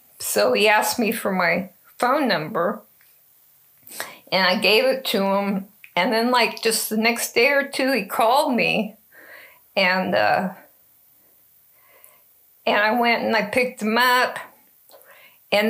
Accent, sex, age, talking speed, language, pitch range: American, female, 50-69, 140 wpm, English, 190-230 Hz